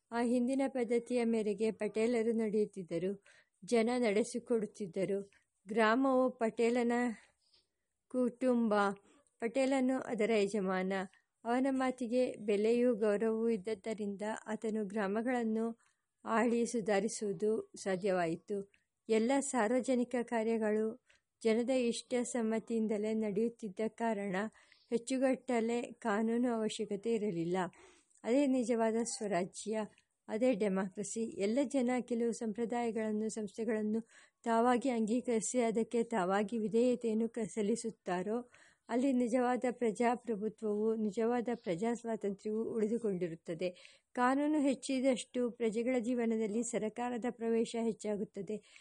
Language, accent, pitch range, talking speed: English, Indian, 215-245 Hz, 75 wpm